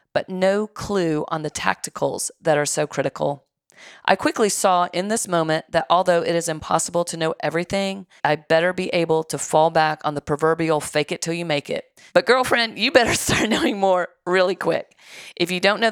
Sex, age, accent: female, 40-59, American